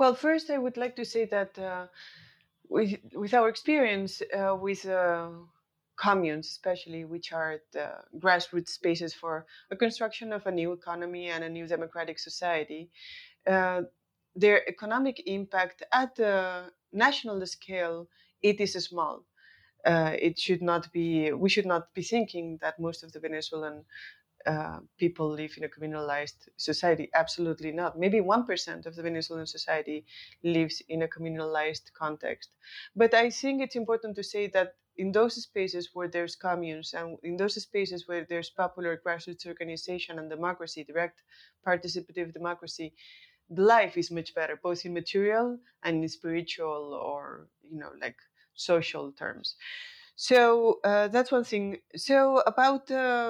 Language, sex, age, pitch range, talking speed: English, female, 20-39, 165-210 Hz, 150 wpm